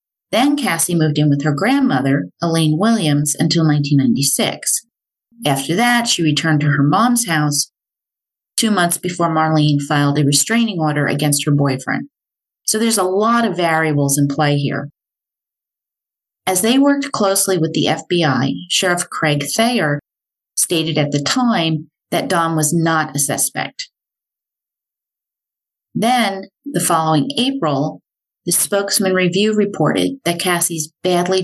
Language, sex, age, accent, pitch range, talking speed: English, female, 30-49, American, 145-190 Hz, 135 wpm